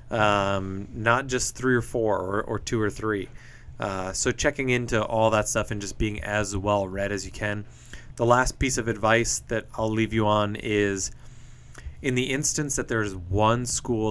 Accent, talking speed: American, 190 wpm